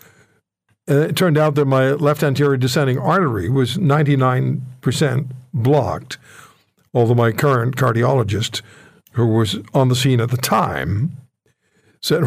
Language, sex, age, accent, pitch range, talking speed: English, male, 60-79, American, 130-150 Hz, 120 wpm